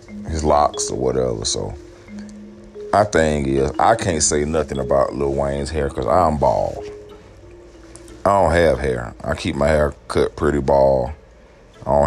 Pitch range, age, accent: 70-95 Hz, 40-59, American